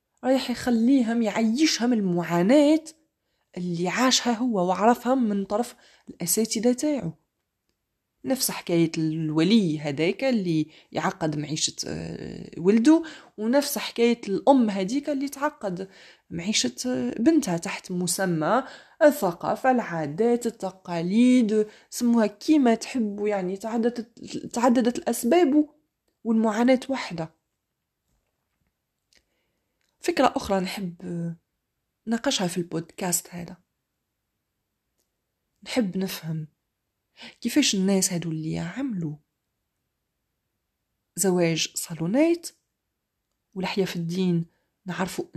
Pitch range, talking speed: 170-245 Hz, 80 wpm